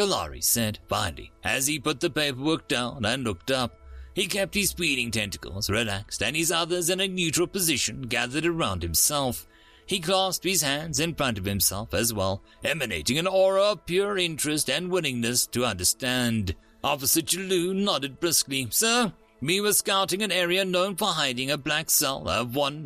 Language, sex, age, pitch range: English, male, 40-59, 115-175 Hz